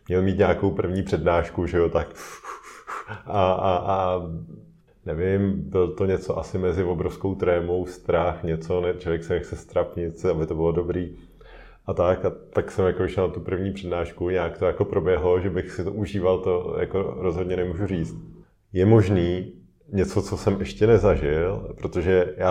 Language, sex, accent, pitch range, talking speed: Czech, male, native, 85-95 Hz, 165 wpm